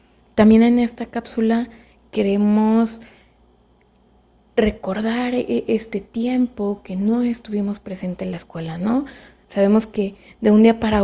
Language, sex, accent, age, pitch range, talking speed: Spanish, female, Mexican, 20-39, 195-230 Hz, 120 wpm